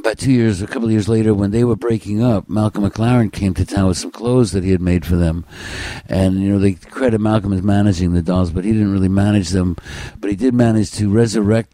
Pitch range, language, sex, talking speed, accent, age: 95-115 Hz, English, male, 250 wpm, American, 60-79